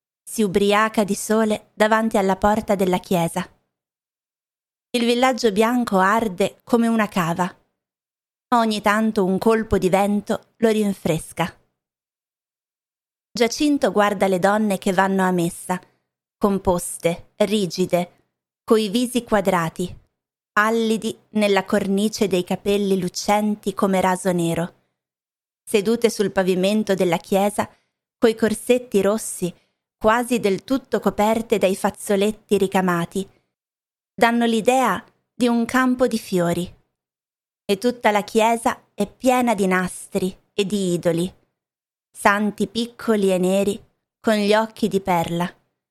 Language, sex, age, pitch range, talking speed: Italian, female, 20-39, 185-225 Hz, 115 wpm